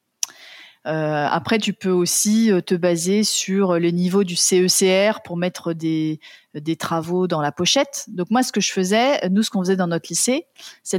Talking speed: 185 wpm